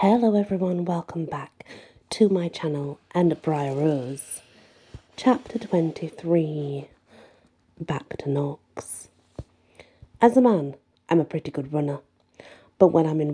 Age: 30-49